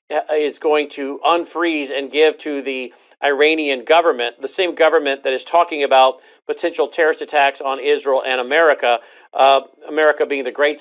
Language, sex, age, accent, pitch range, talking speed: English, male, 50-69, American, 140-200 Hz, 160 wpm